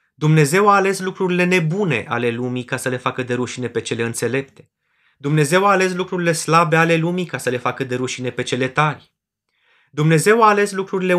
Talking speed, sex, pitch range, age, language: 195 wpm, male, 115-175 Hz, 30-49, Romanian